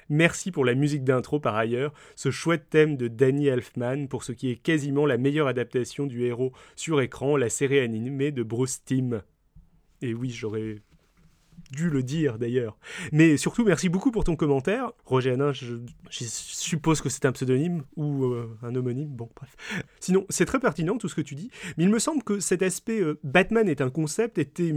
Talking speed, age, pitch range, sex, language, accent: 200 wpm, 30-49, 130-165 Hz, male, French, French